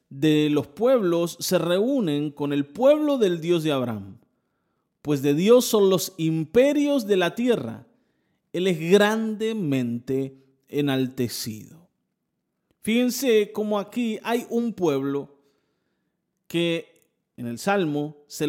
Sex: male